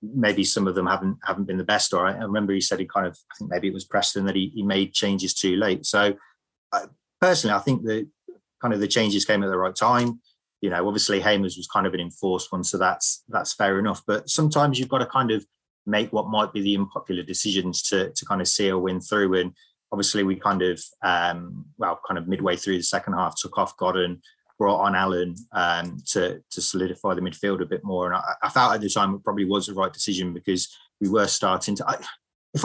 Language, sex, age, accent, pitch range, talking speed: English, male, 20-39, British, 95-110 Hz, 240 wpm